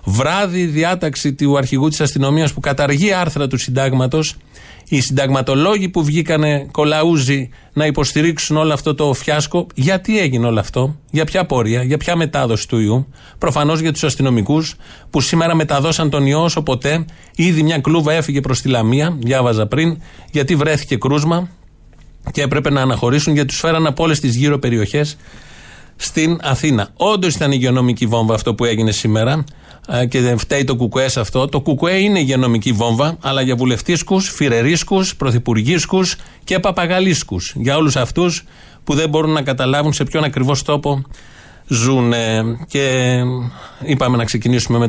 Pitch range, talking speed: 125-160 Hz, 160 wpm